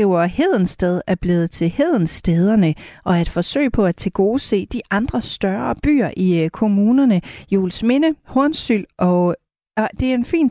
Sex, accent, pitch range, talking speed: female, native, 175-245 Hz, 155 wpm